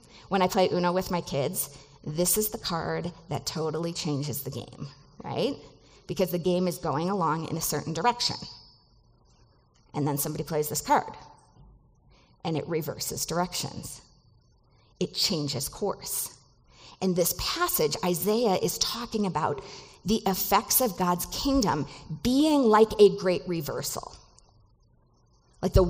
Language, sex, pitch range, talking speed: English, female, 155-210 Hz, 135 wpm